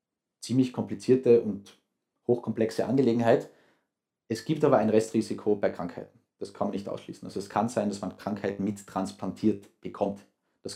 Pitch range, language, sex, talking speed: 105-135 Hz, German, male, 150 wpm